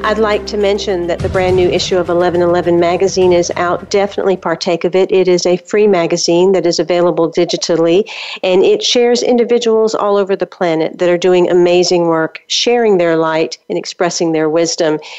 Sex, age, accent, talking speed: female, 50-69, American, 185 wpm